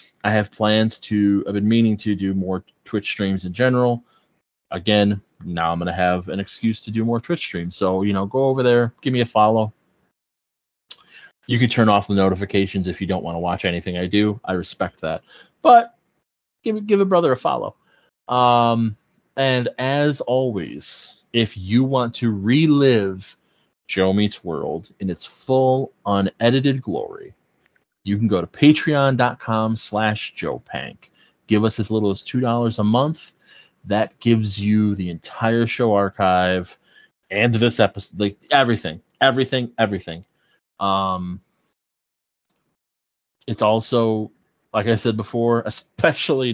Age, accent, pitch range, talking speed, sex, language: 20-39, American, 100-125 Hz, 150 wpm, male, English